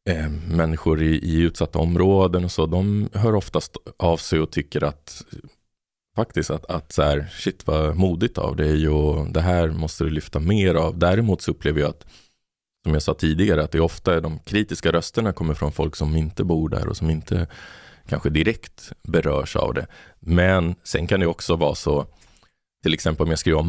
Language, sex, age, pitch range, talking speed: Swedish, male, 20-39, 75-90 Hz, 200 wpm